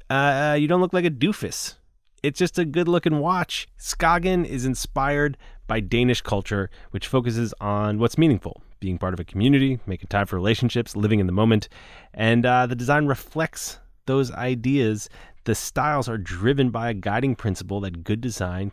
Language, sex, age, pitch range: English, male, 30-49, 95-145 Hz